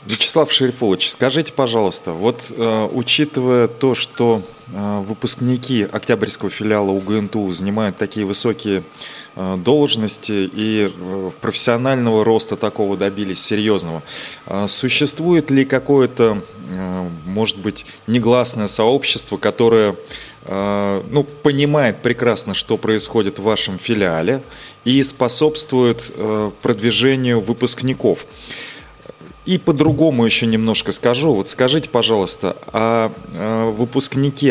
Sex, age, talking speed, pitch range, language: male, 20-39, 105 wpm, 105-130 Hz, Russian